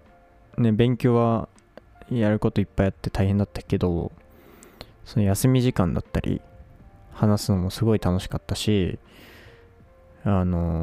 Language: Japanese